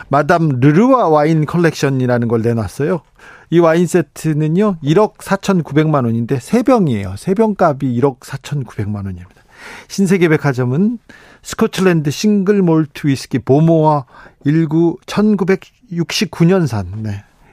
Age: 40-59